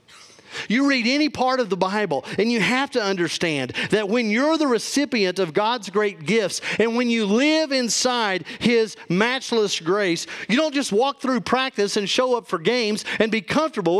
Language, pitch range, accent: English, 190-255 Hz, American